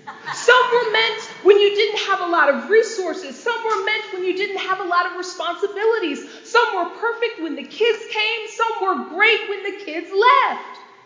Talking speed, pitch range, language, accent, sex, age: 195 wpm, 335-440 Hz, English, American, female, 40-59